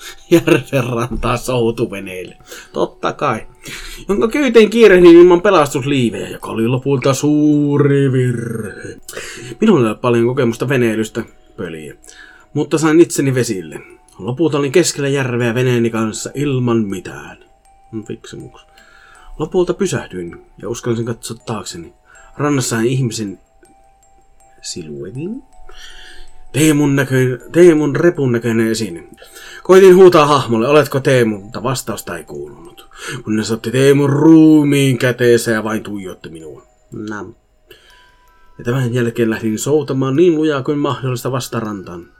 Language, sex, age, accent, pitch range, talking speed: Finnish, male, 30-49, native, 115-145 Hz, 110 wpm